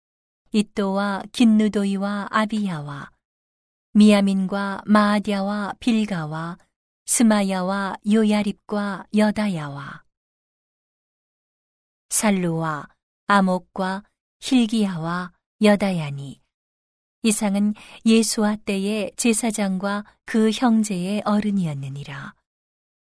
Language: Korean